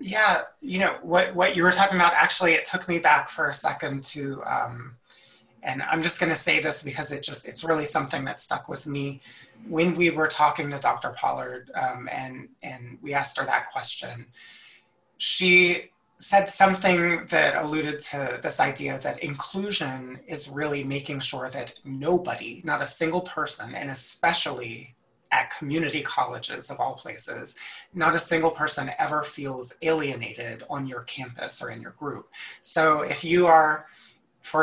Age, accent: 30-49, American